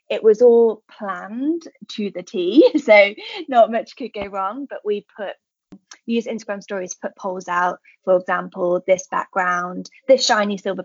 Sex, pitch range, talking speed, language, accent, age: female, 185-240 Hz, 160 wpm, English, British, 20-39